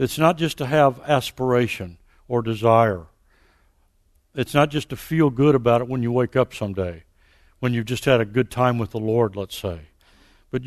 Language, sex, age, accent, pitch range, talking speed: English, male, 60-79, American, 130-200 Hz, 190 wpm